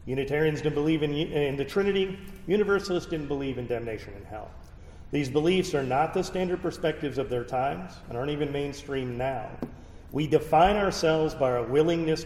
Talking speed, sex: 170 wpm, male